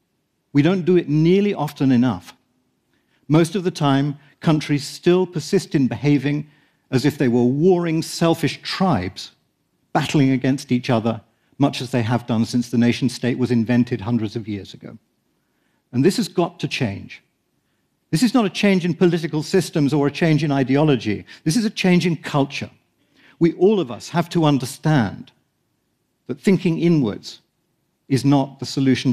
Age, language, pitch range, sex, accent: 50-69, Japanese, 125-165 Hz, male, British